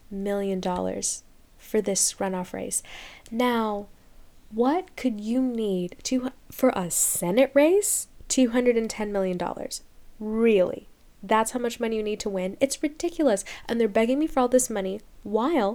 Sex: female